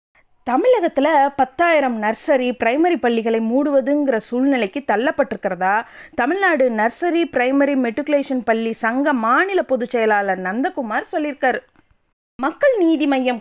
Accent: native